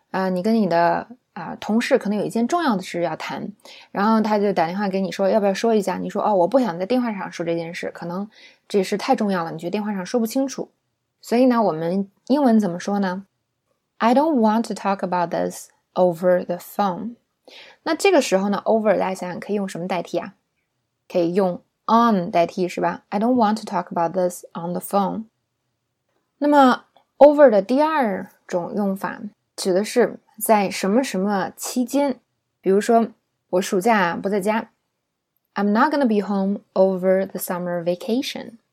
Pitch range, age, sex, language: 180-230 Hz, 20-39, female, Chinese